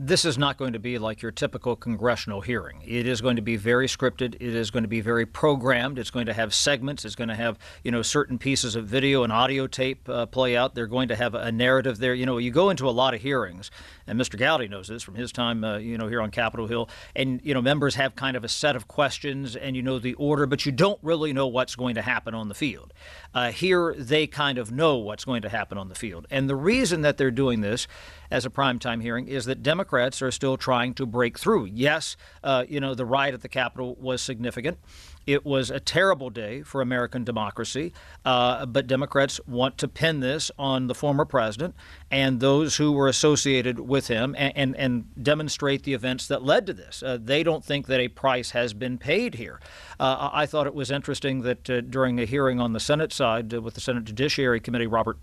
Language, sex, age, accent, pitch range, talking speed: English, male, 50-69, American, 120-140 Hz, 235 wpm